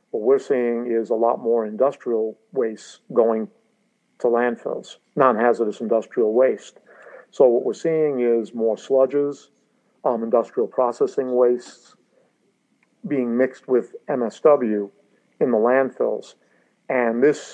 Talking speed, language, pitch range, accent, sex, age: 120 wpm, English, 115-155 Hz, American, male, 50-69